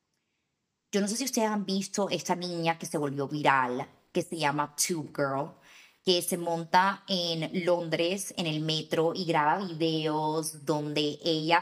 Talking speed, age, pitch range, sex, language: 160 wpm, 20-39, 150-195 Hz, female, Spanish